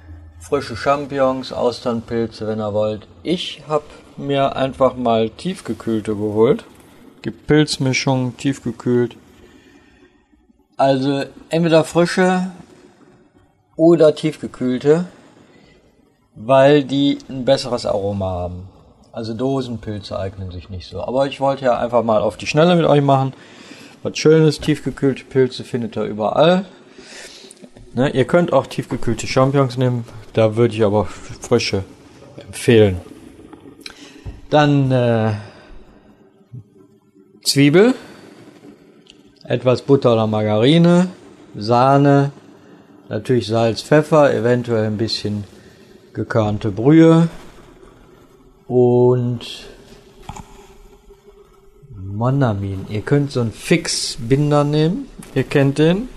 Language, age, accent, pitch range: German, 50-69, German, 110-145 Hz